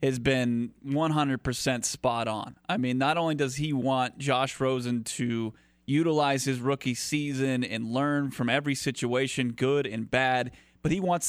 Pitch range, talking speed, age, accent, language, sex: 125-150 Hz, 160 wpm, 30-49, American, English, male